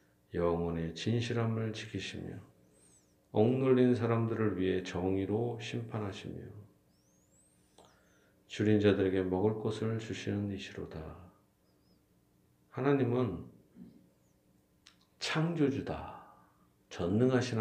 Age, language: 40-59, Korean